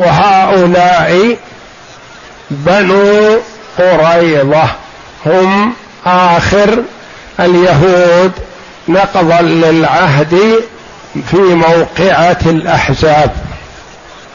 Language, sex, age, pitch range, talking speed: Arabic, male, 60-79, 160-190 Hz, 45 wpm